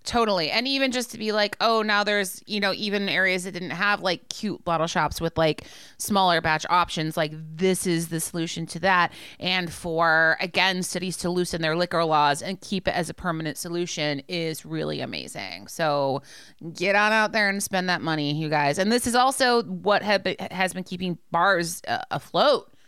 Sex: female